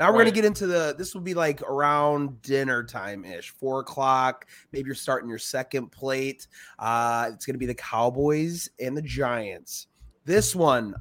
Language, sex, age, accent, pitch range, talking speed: English, male, 30-49, American, 125-155 Hz, 190 wpm